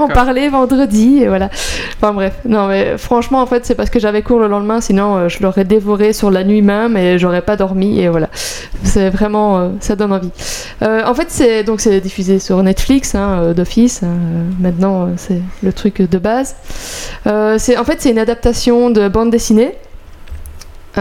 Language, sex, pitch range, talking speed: French, female, 195-235 Hz, 205 wpm